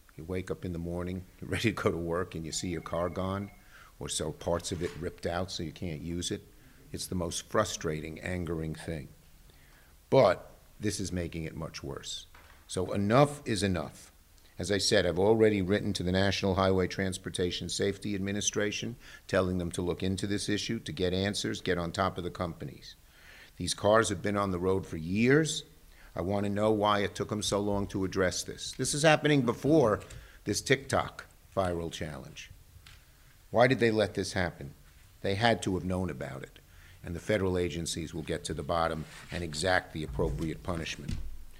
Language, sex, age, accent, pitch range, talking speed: English, male, 50-69, American, 85-105 Hz, 190 wpm